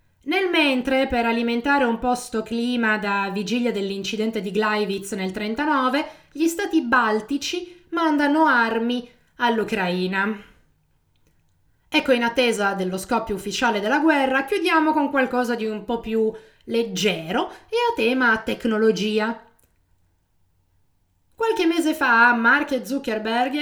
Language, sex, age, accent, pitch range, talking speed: Italian, female, 20-39, native, 215-300 Hz, 115 wpm